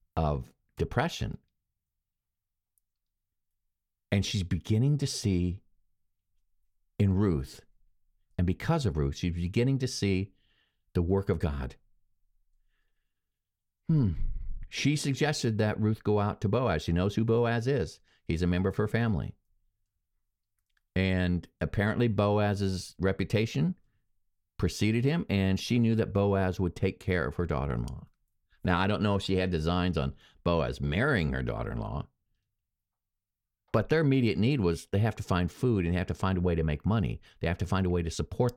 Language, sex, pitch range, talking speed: English, male, 85-105 Hz, 150 wpm